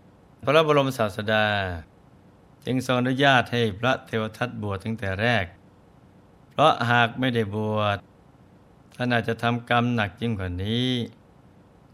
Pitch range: 105-130 Hz